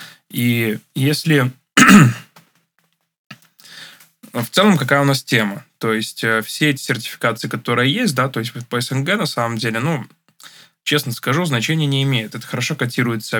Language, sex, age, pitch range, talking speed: Russian, male, 20-39, 115-140 Hz, 145 wpm